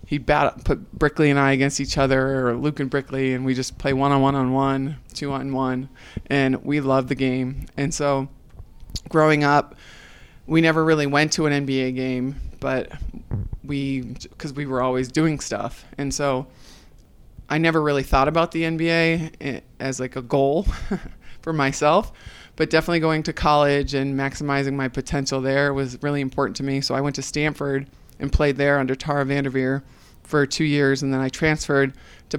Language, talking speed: English, 170 wpm